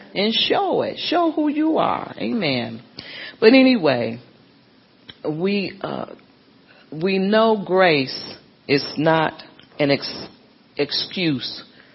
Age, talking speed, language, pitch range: 40-59, 100 wpm, English, 150-210 Hz